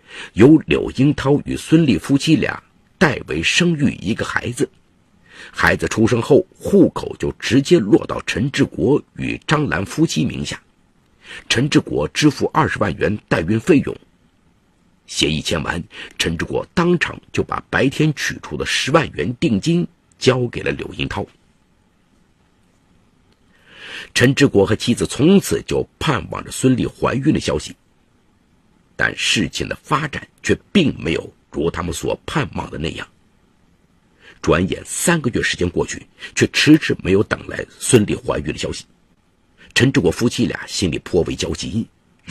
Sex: male